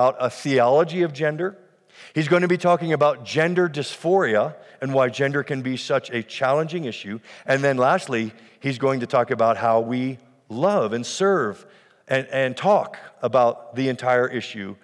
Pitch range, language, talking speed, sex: 120-155 Hz, English, 165 wpm, male